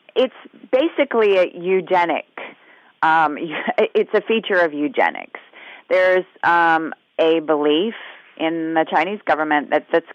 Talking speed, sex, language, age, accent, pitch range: 120 wpm, female, English, 30-49, American, 150-185 Hz